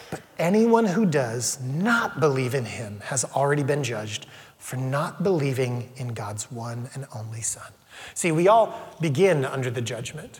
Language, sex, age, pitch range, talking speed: English, male, 30-49, 130-165 Hz, 160 wpm